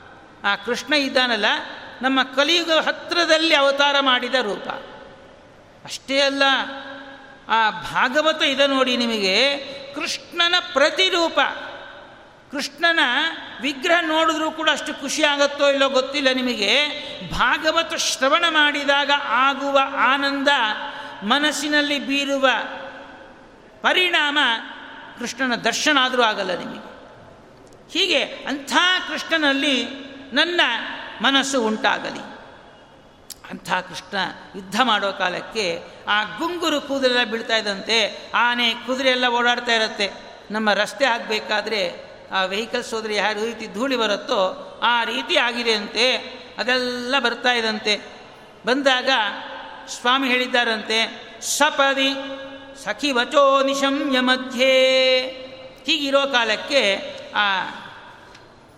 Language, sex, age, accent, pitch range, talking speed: Kannada, male, 60-79, native, 240-295 Hz, 90 wpm